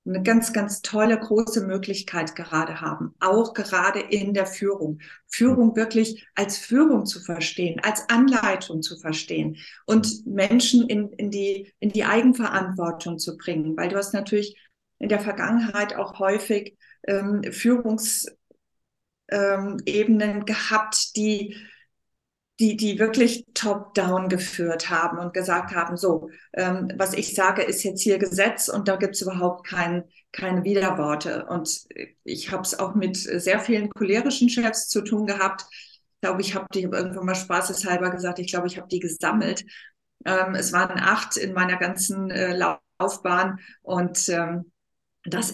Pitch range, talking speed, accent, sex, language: 180-215 Hz, 150 wpm, German, female, German